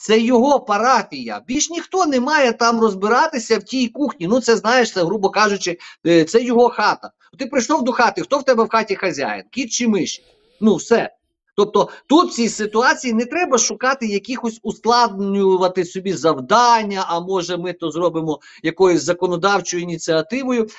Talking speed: 160 wpm